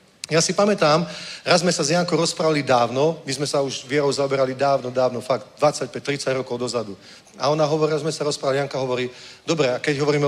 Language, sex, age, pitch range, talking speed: Czech, male, 40-59, 130-170 Hz, 205 wpm